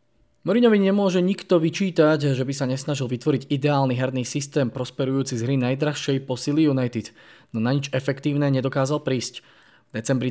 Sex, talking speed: male, 155 wpm